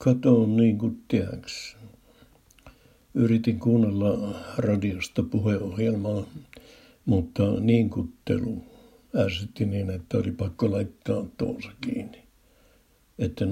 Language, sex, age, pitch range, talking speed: Finnish, male, 60-79, 100-120 Hz, 75 wpm